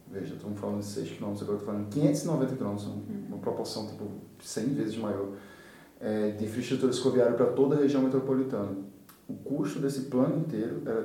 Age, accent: 20-39, Brazilian